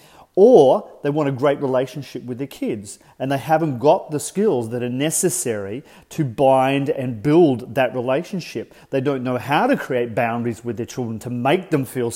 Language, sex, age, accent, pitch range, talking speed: English, male, 40-59, Australian, 125-165 Hz, 190 wpm